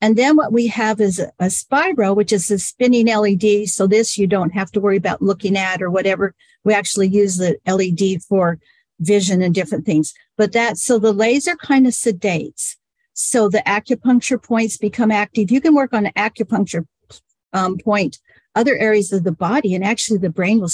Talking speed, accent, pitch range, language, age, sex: 195 wpm, American, 195-240 Hz, English, 50-69, female